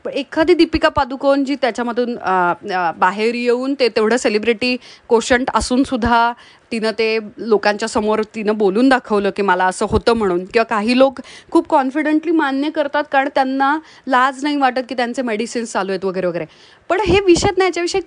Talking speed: 165 wpm